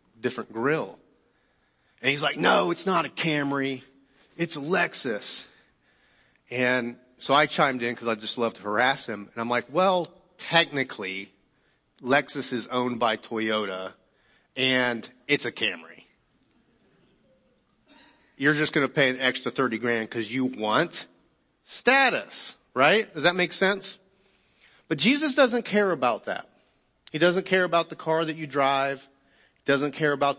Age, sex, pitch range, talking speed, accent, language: 40-59, male, 125-160 Hz, 145 wpm, American, English